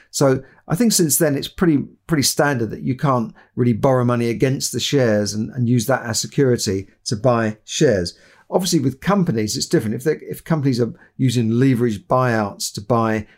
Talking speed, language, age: 185 wpm, English, 50-69